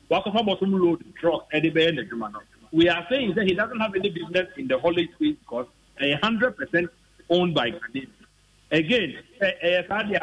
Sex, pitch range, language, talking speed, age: male, 160-220 Hz, English, 135 wpm, 50-69